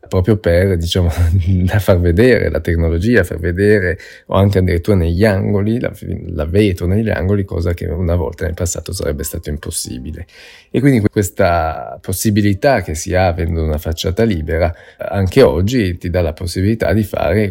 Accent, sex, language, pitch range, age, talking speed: native, male, Italian, 85-100 Hz, 20-39, 160 wpm